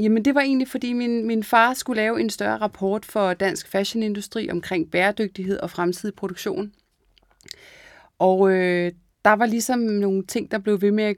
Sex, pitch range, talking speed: female, 180-215 Hz, 170 wpm